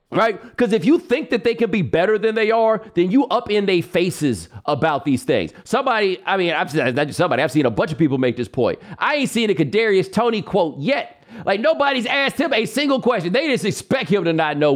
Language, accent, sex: English, American, male